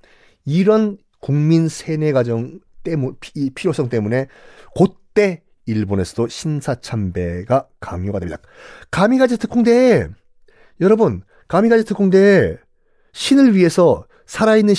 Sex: male